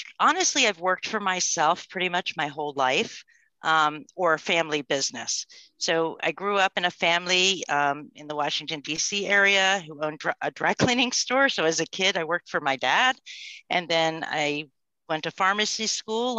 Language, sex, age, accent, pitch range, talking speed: English, female, 50-69, American, 160-195 Hz, 180 wpm